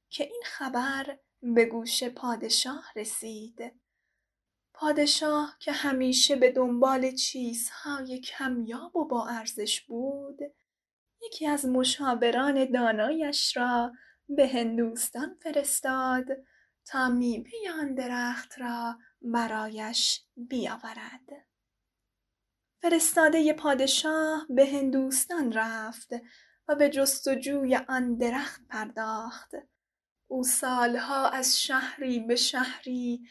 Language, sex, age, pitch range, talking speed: Persian, female, 10-29, 235-285 Hz, 90 wpm